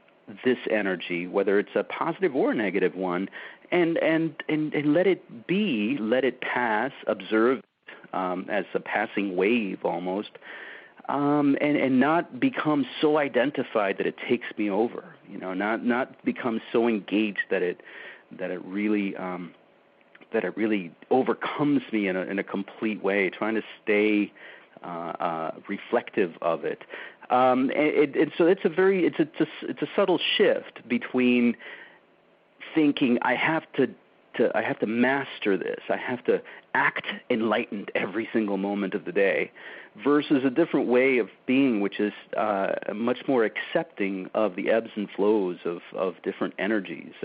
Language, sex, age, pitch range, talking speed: English, male, 40-59, 100-150 Hz, 165 wpm